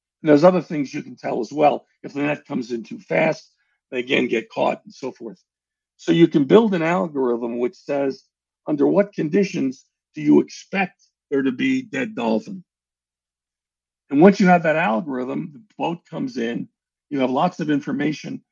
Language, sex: English, male